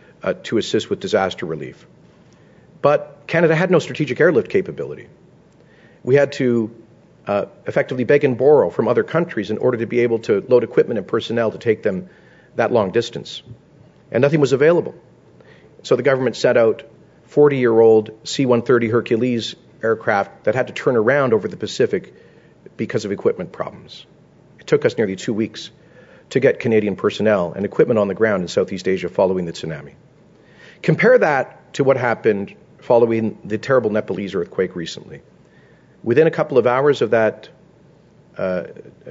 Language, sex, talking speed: English, male, 160 wpm